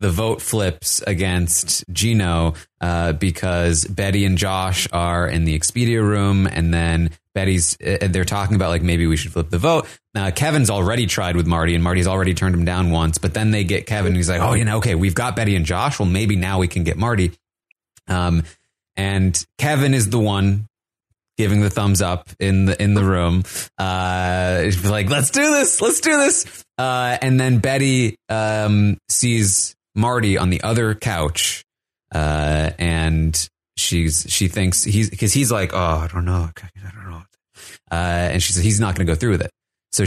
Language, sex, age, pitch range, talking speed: English, male, 20-39, 85-105 Hz, 190 wpm